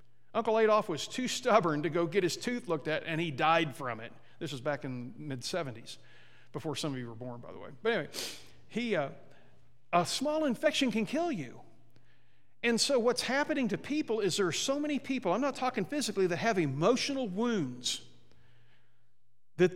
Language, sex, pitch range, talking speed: English, male, 140-235 Hz, 190 wpm